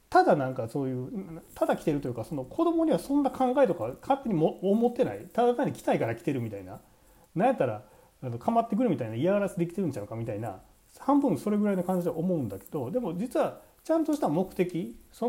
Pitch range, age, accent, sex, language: 125-210 Hz, 40-59, native, male, Japanese